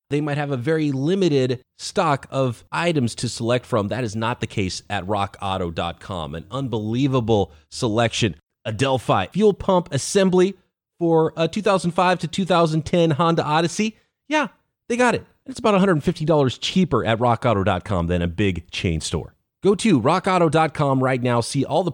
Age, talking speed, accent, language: 30-49, 155 wpm, American, English